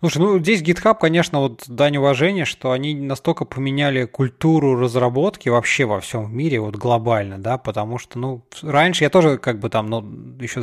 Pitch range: 130-170 Hz